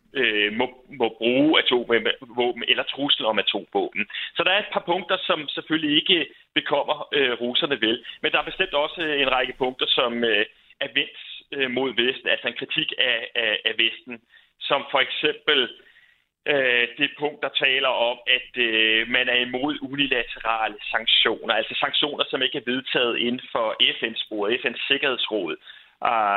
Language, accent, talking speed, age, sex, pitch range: Danish, native, 170 wpm, 30-49, male, 125-170 Hz